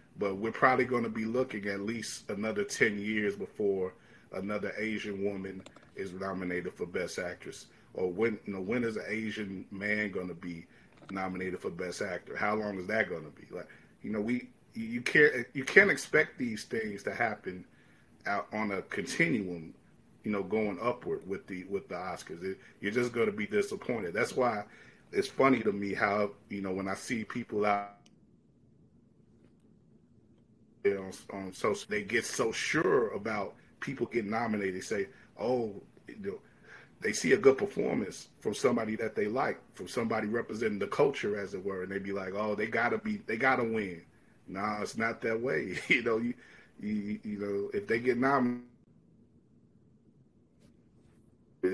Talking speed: 175 wpm